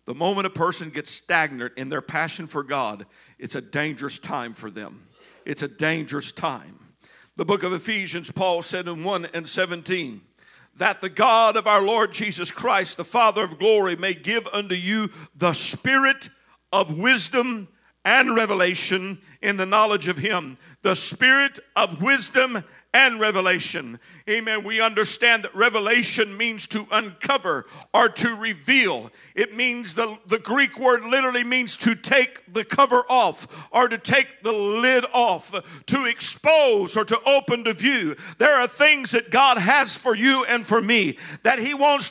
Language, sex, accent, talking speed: English, male, American, 165 wpm